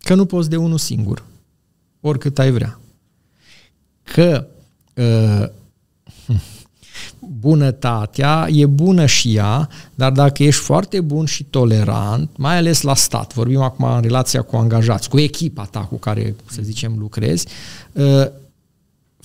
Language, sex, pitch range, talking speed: Romanian, male, 120-165 Hz, 130 wpm